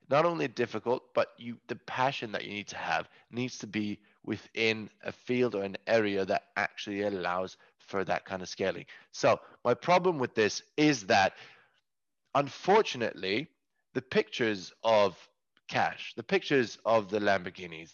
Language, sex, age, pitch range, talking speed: English, male, 20-39, 100-130 Hz, 150 wpm